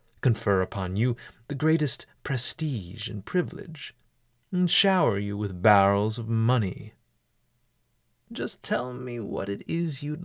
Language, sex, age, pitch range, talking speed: English, male, 30-49, 110-145 Hz, 130 wpm